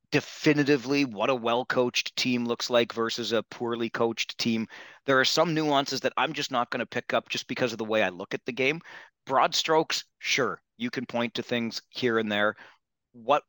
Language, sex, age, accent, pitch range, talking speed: English, male, 40-59, American, 110-130 Hz, 205 wpm